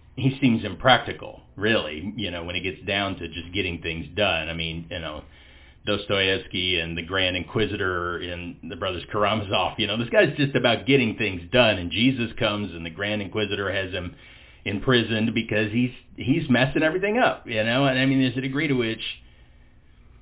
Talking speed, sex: 185 wpm, male